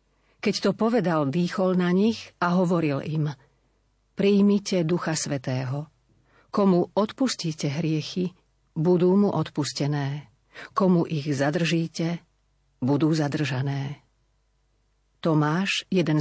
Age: 40-59